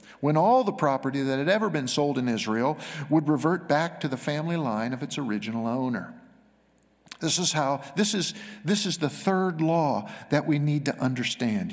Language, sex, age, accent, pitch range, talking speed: English, male, 50-69, American, 145-205 Hz, 190 wpm